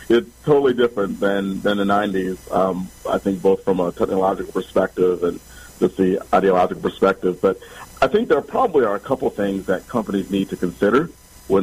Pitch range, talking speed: 100-120 Hz, 180 wpm